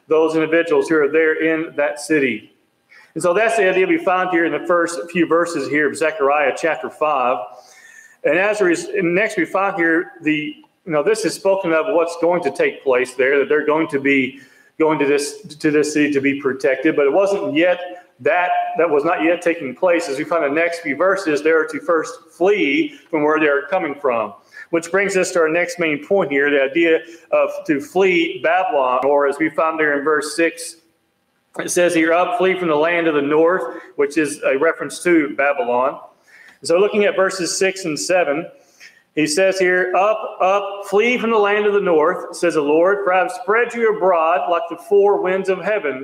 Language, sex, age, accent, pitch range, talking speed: English, male, 40-59, American, 160-215 Hz, 215 wpm